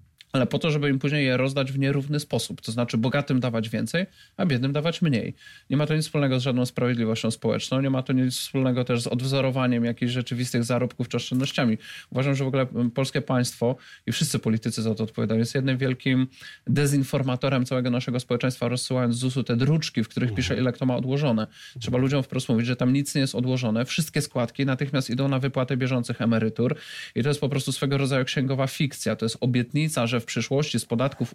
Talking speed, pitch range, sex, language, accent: 205 wpm, 120-140 Hz, male, Polish, native